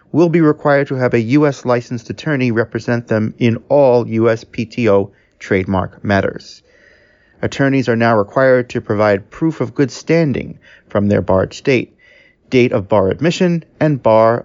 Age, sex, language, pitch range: 40-59, male, English, 110-140 Hz